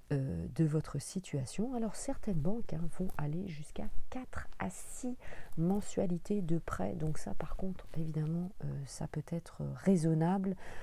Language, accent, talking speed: French, French, 150 wpm